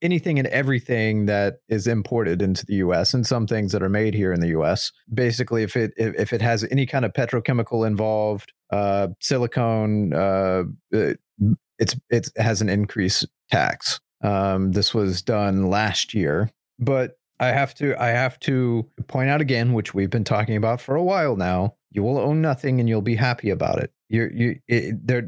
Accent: American